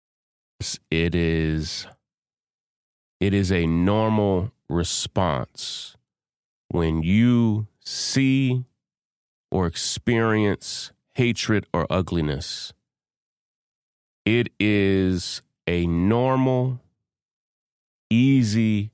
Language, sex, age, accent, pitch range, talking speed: English, male, 30-49, American, 90-125 Hz, 65 wpm